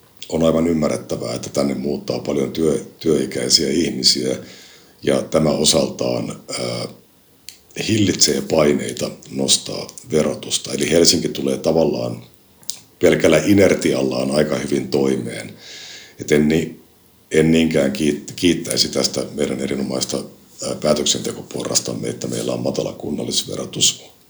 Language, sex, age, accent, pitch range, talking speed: Finnish, male, 60-79, native, 70-85 Hz, 95 wpm